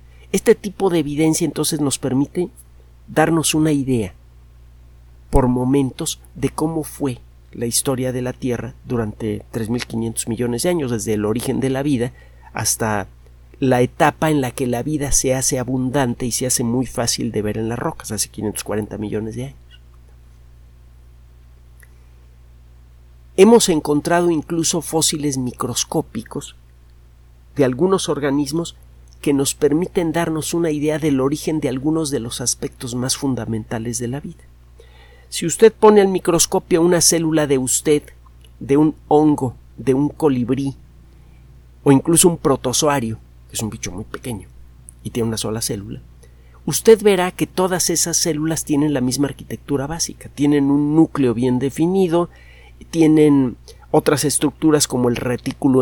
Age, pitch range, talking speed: 50-69, 100-155 Hz, 145 wpm